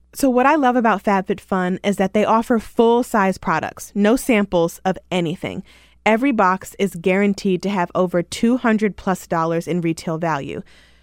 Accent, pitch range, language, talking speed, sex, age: American, 175-225 Hz, English, 150 wpm, female, 20-39